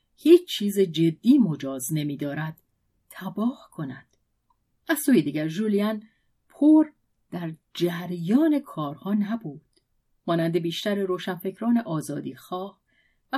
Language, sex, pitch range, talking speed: Persian, female, 160-230 Hz, 105 wpm